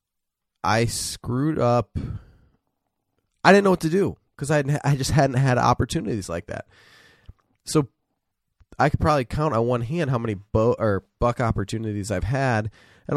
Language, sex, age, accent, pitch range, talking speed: English, male, 20-39, American, 100-130 Hz, 160 wpm